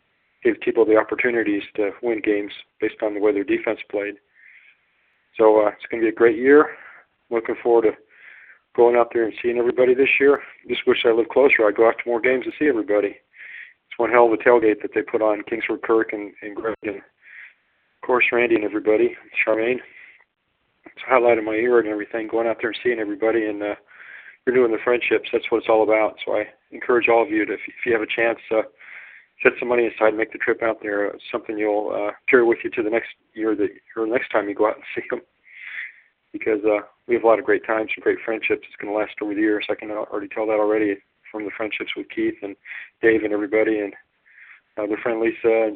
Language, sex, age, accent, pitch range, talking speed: English, male, 40-59, American, 105-125 Hz, 230 wpm